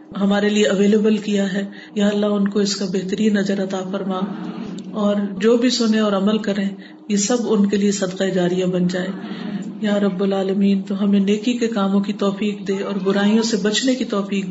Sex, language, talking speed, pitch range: female, Urdu, 205 wpm, 200-225 Hz